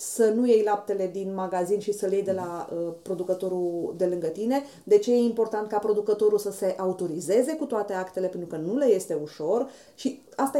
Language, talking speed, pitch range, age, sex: Romanian, 210 wpm, 200-270 Hz, 30-49, female